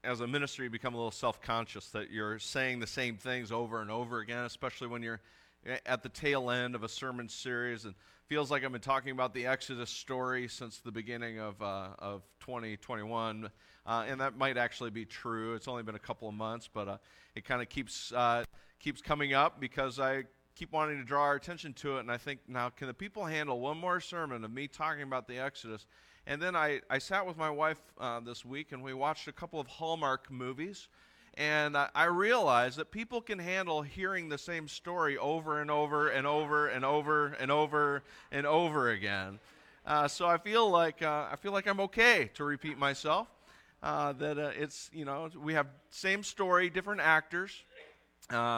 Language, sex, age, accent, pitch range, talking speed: English, male, 30-49, American, 120-150 Hz, 210 wpm